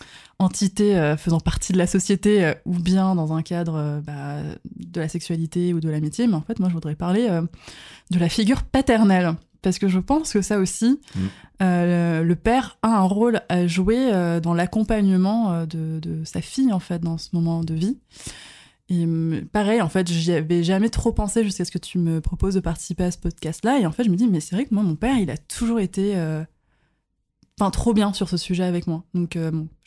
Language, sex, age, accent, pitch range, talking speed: French, female, 20-39, French, 165-200 Hz, 225 wpm